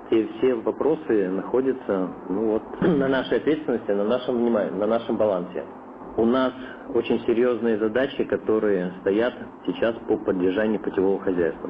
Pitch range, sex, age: 95-120 Hz, male, 50-69